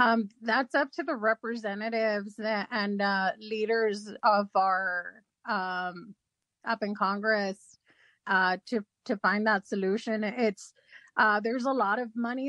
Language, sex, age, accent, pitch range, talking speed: English, female, 30-49, American, 210-240 Hz, 135 wpm